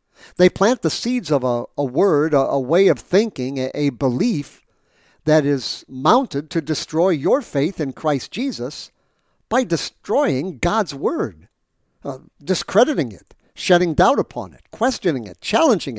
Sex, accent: male, American